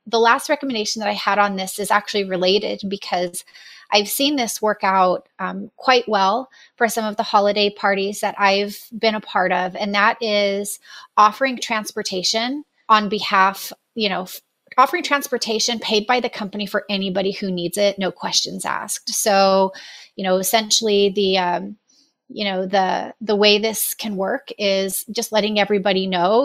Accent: American